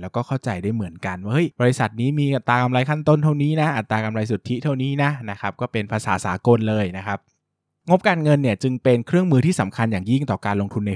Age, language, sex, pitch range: 20-39, Thai, male, 105-135 Hz